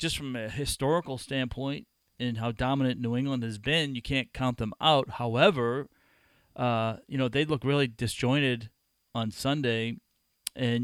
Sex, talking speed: male, 155 wpm